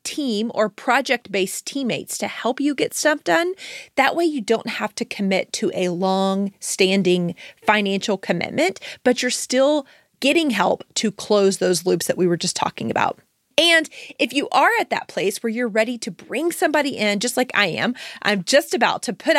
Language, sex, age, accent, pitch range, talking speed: English, female, 30-49, American, 195-275 Hz, 185 wpm